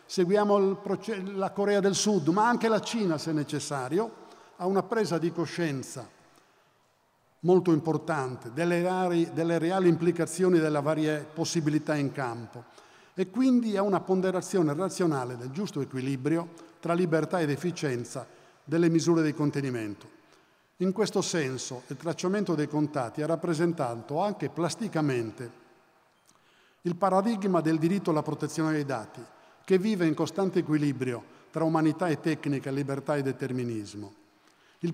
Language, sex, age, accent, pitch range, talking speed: Italian, male, 50-69, native, 145-180 Hz, 130 wpm